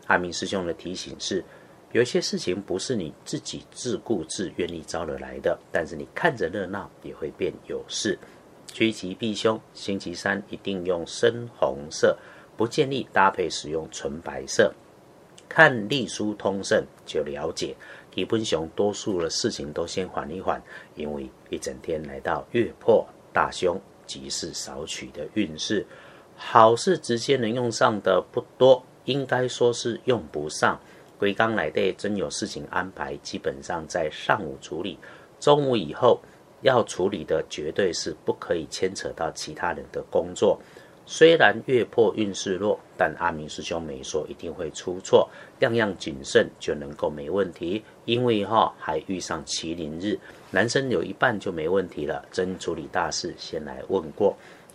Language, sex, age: Chinese, male, 50-69